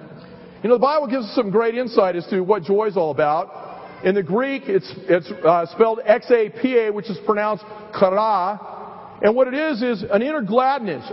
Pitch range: 215-275 Hz